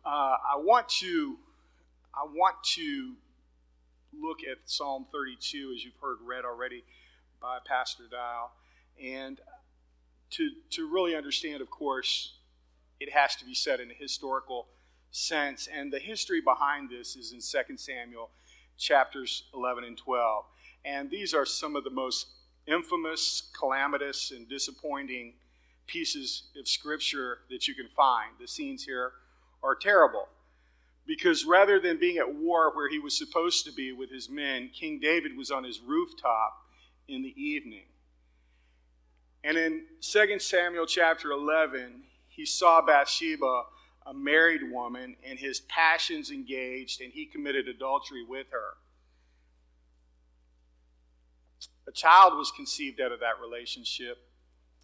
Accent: American